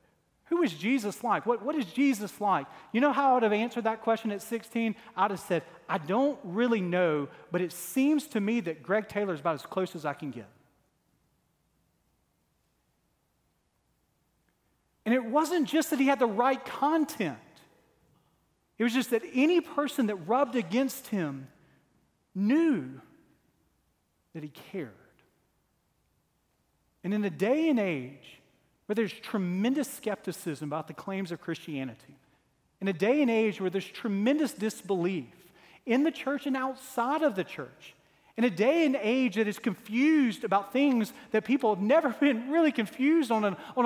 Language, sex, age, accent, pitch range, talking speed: English, male, 40-59, American, 195-275 Hz, 160 wpm